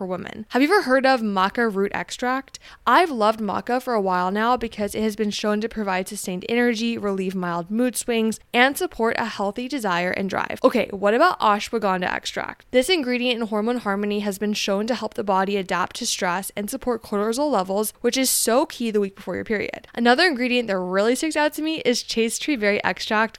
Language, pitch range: English, 200-250 Hz